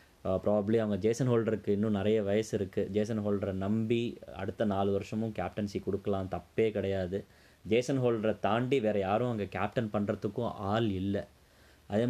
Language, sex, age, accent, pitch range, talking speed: Tamil, male, 20-39, native, 95-110 Hz, 145 wpm